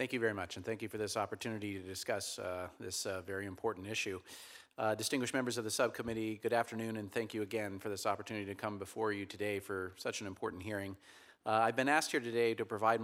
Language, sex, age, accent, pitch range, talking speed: English, male, 40-59, American, 100-120 Hz, 235 wpm